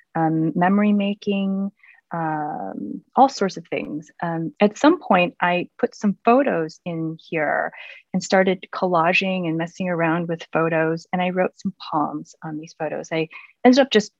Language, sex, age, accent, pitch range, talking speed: English, female, 30-49, American, 155-190 Hz, 160 wpm